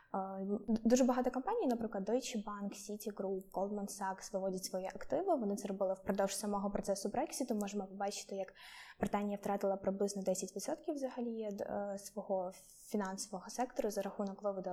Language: Ukrainian